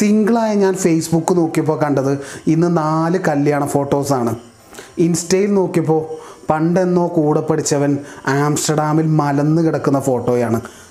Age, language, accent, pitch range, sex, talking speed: 30-49, Malayalam, native, 140-175 Hz, male, 95 wpm